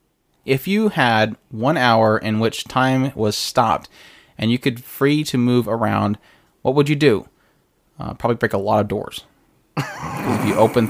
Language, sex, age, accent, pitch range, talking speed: English, male, 20-39, American, 105-130 Hz, 170 wpm